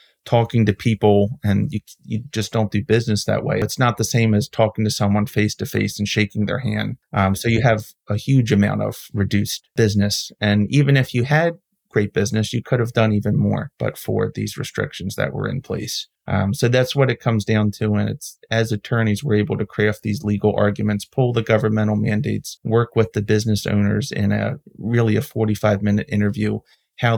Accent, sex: American, male